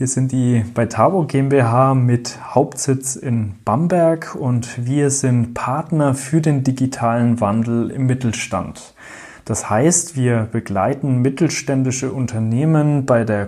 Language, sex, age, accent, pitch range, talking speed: German, male, 30-49, German, 120-155 Hz, 125 wpm